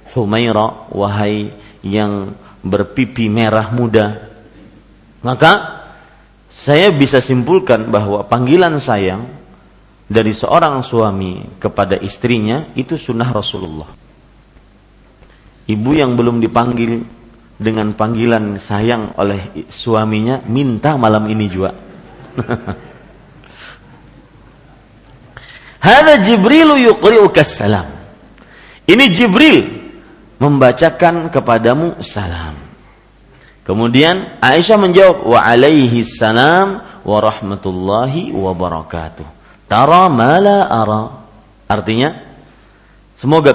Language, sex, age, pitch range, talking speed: Malay, male, 50-69, 100-135 Hz, 75 wpm